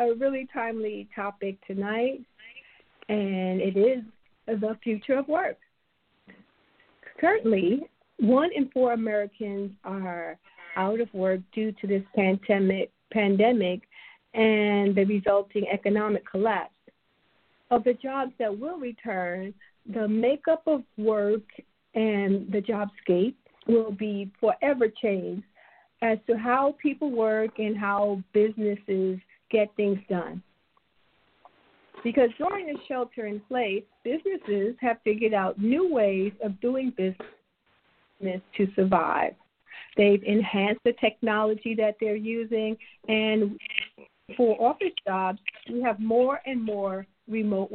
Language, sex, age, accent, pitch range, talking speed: English, female, 50-69, American, 200-240 Hz, 115 wpm